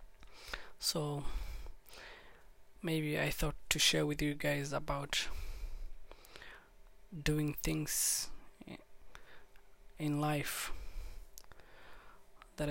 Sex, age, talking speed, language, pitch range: male, 20-39, 70 wpm, English, 145-155 Hz